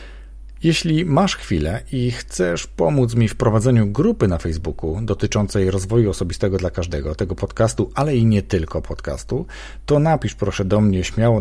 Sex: male